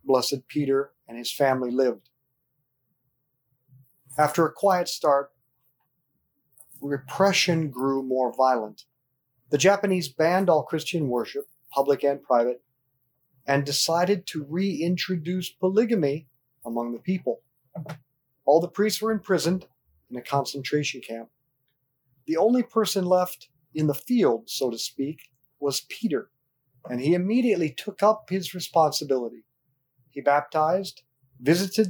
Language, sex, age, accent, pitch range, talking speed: English, male, 40-59, American, 130-175 Hz, 115 wpm